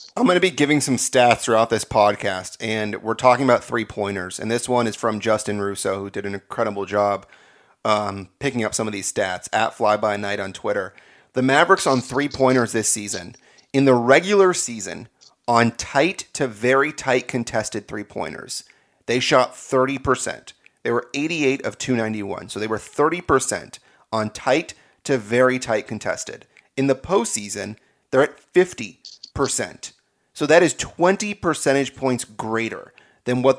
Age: 30-49